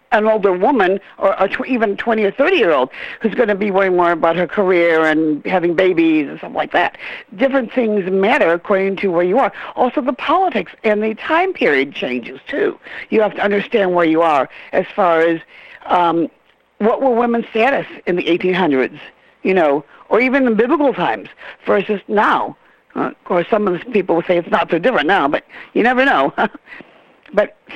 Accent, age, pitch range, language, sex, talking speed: American, 60-79, 185-240 Hz, English, female, 190 wpm